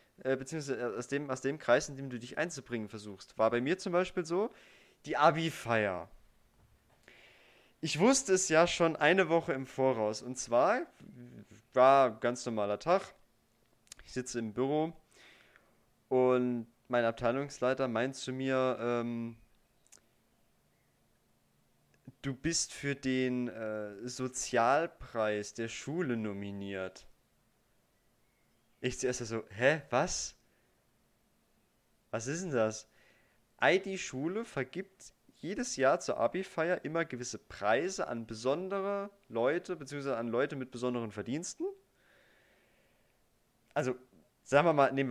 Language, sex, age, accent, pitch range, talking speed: German, male, 20-39, German, 115-145 Hz, 115 wpm